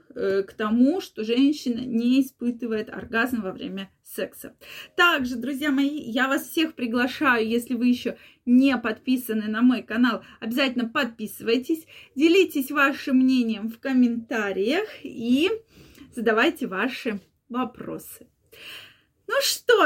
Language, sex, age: Russian, female, 20-39